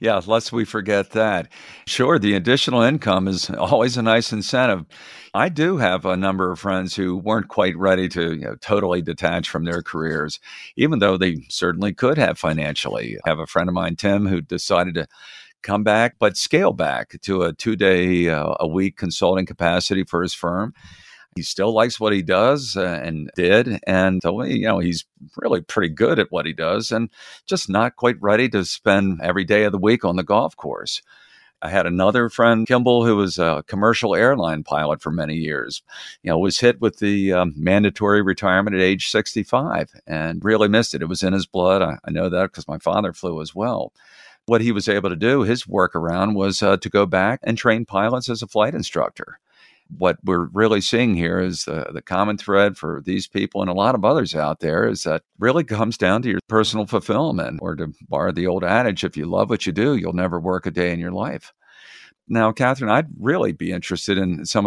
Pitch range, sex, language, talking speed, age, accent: 90-110 Hz, male, English, 205 wpm, 50-69, American